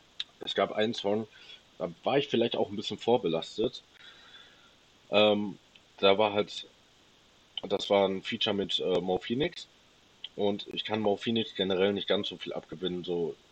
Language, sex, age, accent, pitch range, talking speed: German, male, 30-49, German, 85-105 Hz, 145 wpm